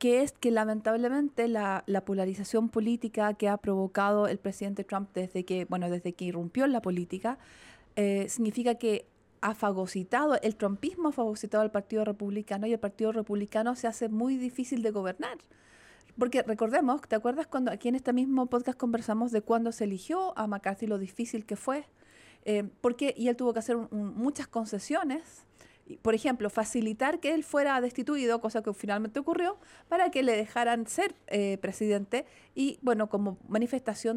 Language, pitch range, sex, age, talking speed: Spanish, 205-250 Hz, female, 40-59, 170 wpm